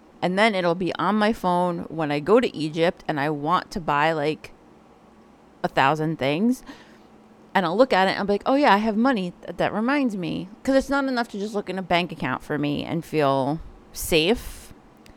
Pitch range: 165-220 Hz